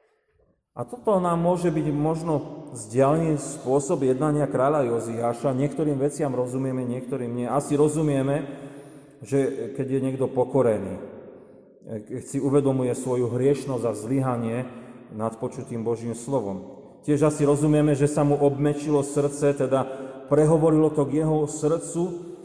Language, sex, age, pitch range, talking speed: Slovak, male, 30-49, 130-155 Hz, 130 wpm